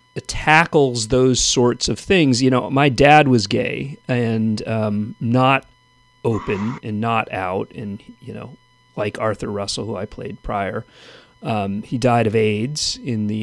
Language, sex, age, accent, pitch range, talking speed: English, male, 40-59, American, 115-135 Hz, 155 wpm